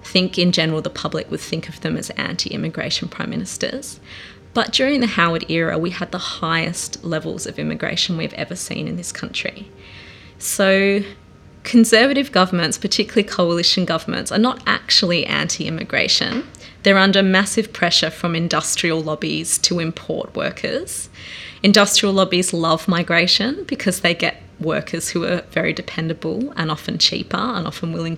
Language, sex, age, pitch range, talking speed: English, female, 20-39, 160-195 Hz, 145 wpm